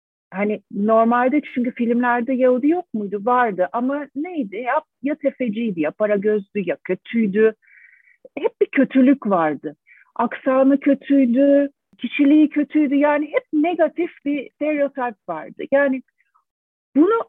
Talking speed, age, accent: 115 wpm, 50-69, native